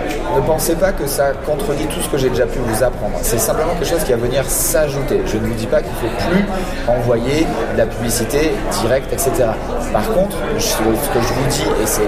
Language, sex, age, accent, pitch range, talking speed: French, male, 30-49, French, 115-140 Hz, 235 wpm